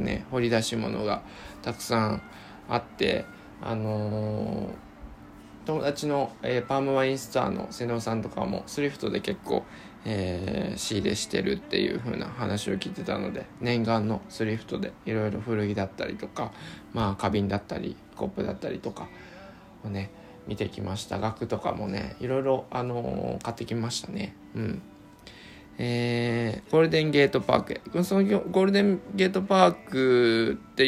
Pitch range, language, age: 110-135 Hz, Japanese, 20-39